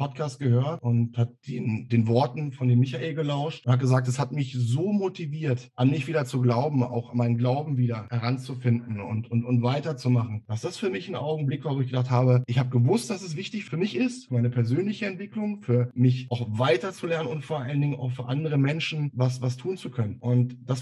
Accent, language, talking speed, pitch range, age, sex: German, German, 220 wpm, 125-155 Hz, 10-29, male